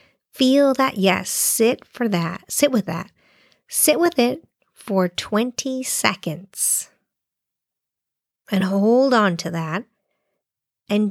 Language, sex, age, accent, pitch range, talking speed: English, female, 50-69, American, 180-235 Hz, 115 wpm